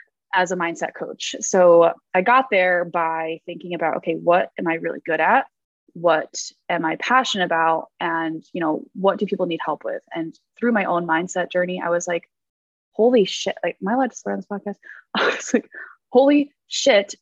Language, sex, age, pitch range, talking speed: English, female, 20-39, 170-225 Hz, 190 wpm